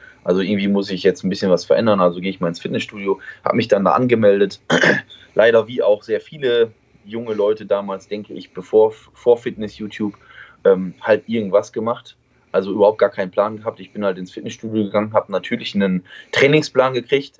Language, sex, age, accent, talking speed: German, male, 20-39, German, 180 wpm